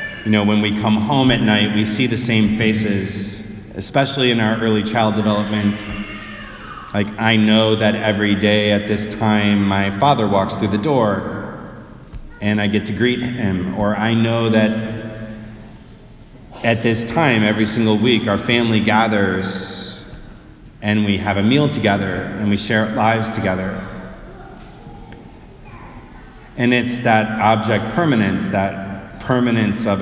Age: 30-49